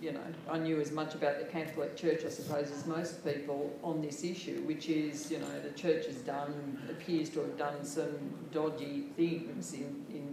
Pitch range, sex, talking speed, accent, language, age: 145-165 Hz, female, 205 wpm, Australian, English, 50-69